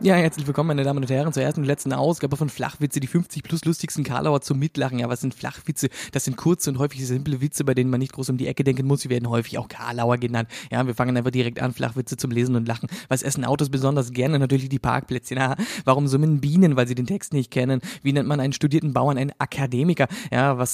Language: German